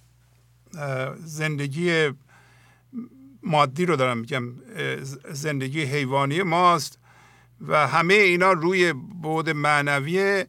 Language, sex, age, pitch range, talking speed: English, male, 50-69, 140-180 Hz, 80 wpm